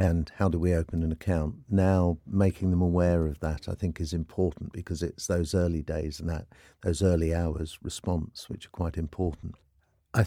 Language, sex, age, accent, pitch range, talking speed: English, male, 50-69, British, 85-95 Hz, 195 wpm